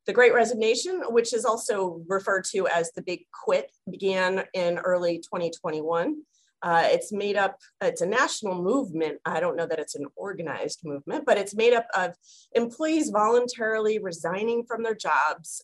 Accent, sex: American, female